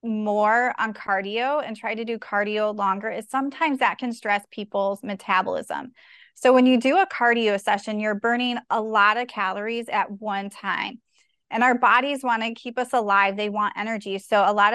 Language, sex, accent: English, female, American